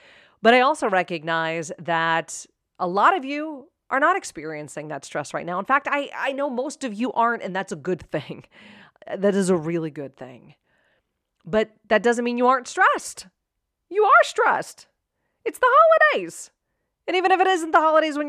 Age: 30-49